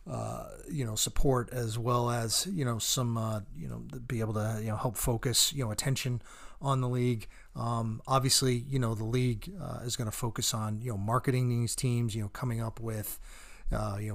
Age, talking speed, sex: 30-49, 190 wpm, male